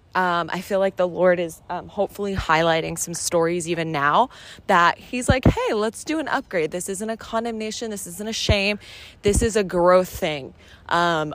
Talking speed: 190 wpm